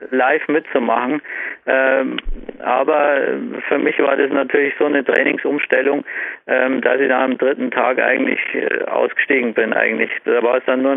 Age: 50-69